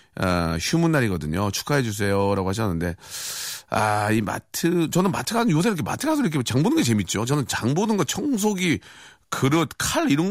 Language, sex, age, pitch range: Korean, male, 40-59, 100-155 Hz